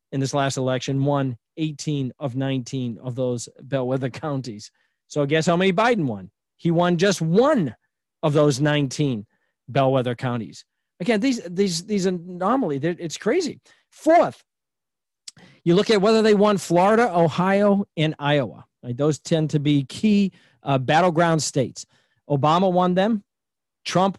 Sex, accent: male, American